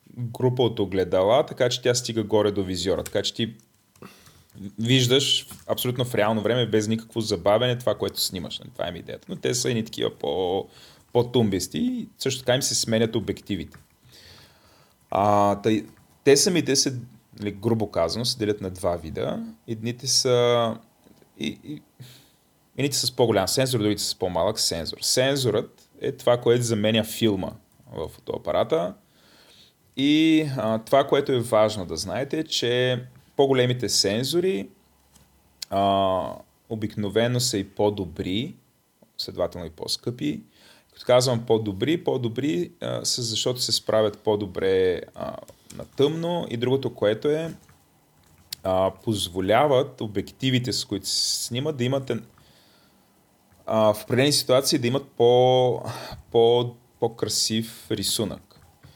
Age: 30-49